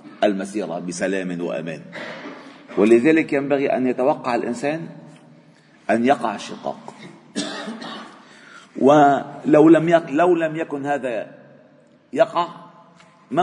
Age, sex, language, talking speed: 50-69, male, Arabic, 90 wpm